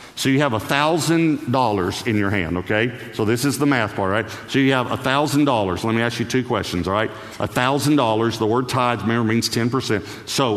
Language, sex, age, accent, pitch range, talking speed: English, male, 50-69, American, 105-140 Hz, 235 wpm